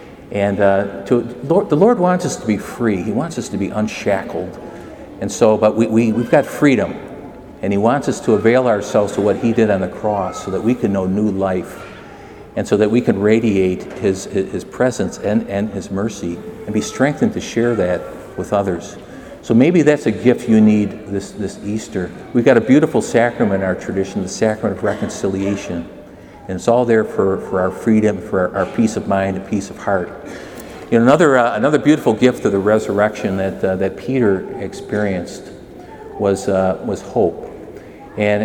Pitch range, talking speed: 100-115 Hz, 195 wpm